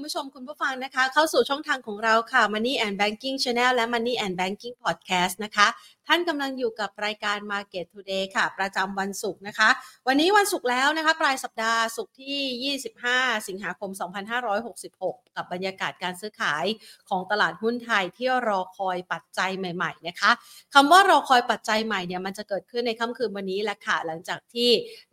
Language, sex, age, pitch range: Thai, female, 30-49, 190-235 Hz